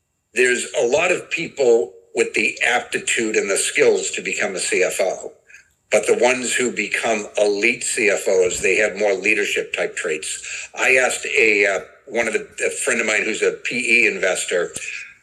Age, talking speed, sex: 60-79, 170 wpm, male